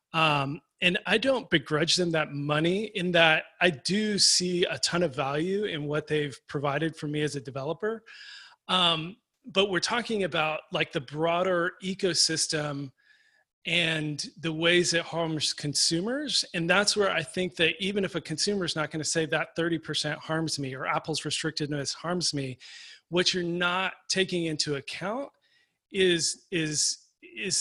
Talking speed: 160 wpm